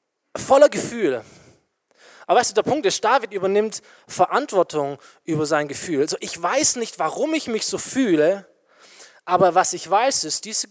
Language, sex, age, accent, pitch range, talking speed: German, male, 20-39, German, 170-260 Hz, 165 wpm